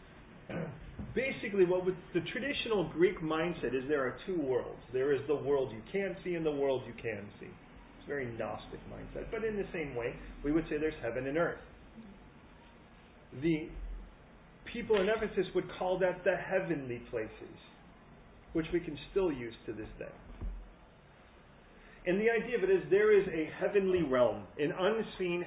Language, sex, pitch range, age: English, male, 135-190 Hz, 40-59